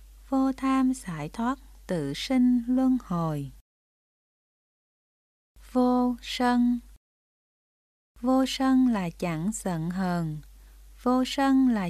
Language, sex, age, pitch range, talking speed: Vietnamese, female, 20-39, 170-255 Hz, 95 wpm